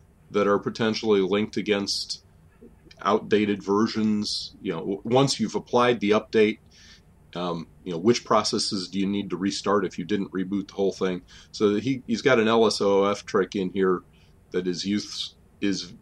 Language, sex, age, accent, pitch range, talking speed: English, male, 40-59, American, 85-105 Hz, 165 wpm